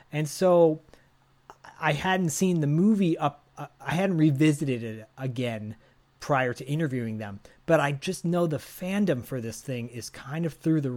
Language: English